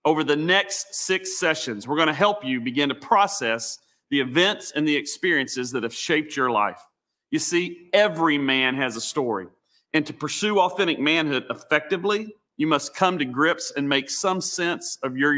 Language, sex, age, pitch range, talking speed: English, male, 40-59, 140-185 Hz, 185 wpm